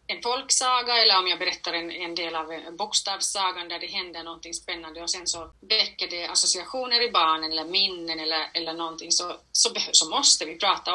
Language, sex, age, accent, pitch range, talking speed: Swedish, female, 30-49, native, 165-205 Hz, 190 wpm